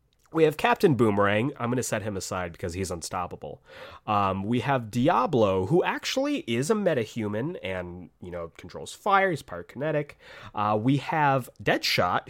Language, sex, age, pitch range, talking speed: English, male, 30-49, 90-135 Hz, 160 wpm